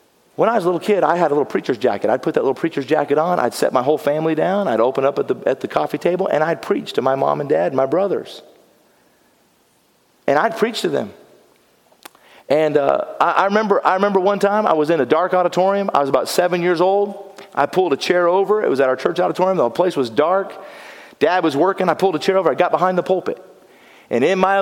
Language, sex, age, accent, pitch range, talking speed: English, male, 40-59, American, 120-195 Hz, 250 wpm